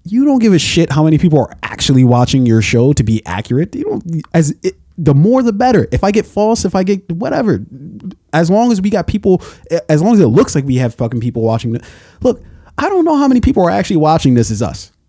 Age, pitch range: 20-39, 120-175 Hz